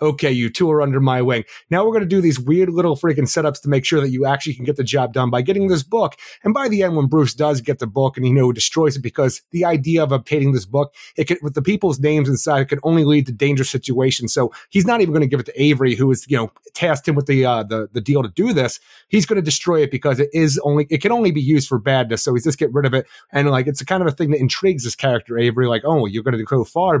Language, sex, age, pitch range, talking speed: English, male, 30-49, 135-165 Hz, 295 wpm